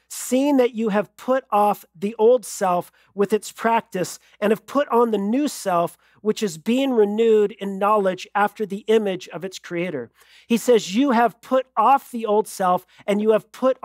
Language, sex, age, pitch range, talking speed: English, male, 40-59, 200-235 Hz, 190 wpm